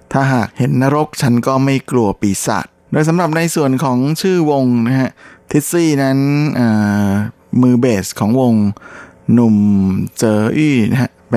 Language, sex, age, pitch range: Thai, male, 20-39, 105-125 Hz